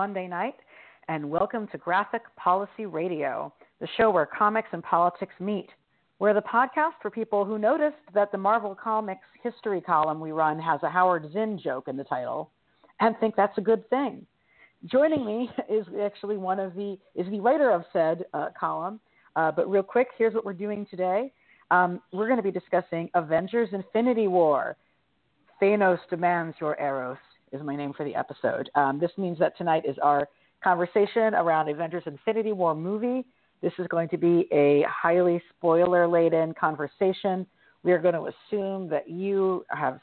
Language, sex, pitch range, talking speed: English, female, 165-210 Hz, 170 wpm